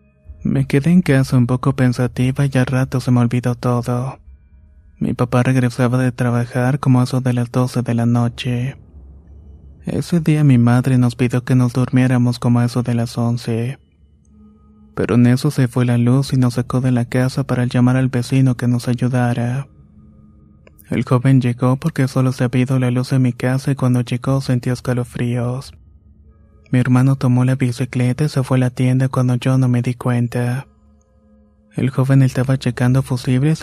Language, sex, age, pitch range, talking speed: Spanish, male, 20-39, 120-130 Hz, 185 wpm